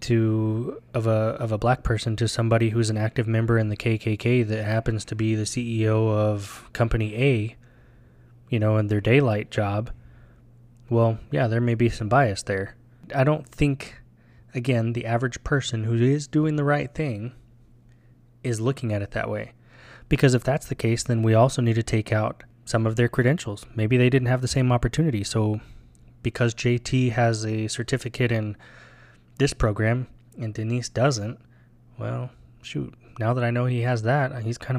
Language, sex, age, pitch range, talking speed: English, male, 20-39, 110-125 Hz, 180 wpm